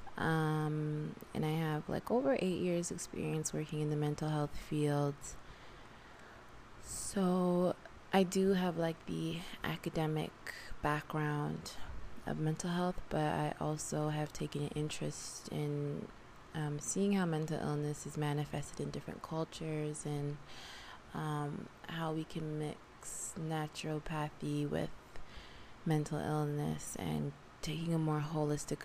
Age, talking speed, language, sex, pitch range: 20-39, 125 wpm, English, female, 145-165 Hz